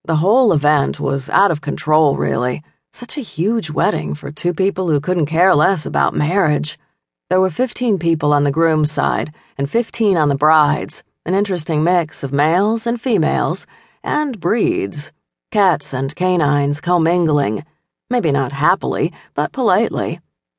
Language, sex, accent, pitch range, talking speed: English, female, American, 145-195 Hz, 150 wpm